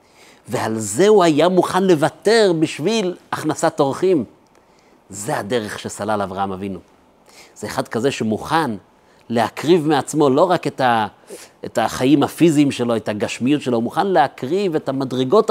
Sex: male